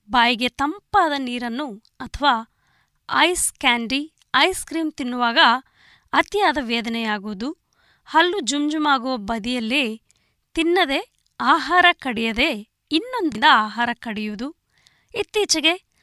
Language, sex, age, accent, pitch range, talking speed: Kannada, female, 20-39, native, 235-315 Hz, 80 wpm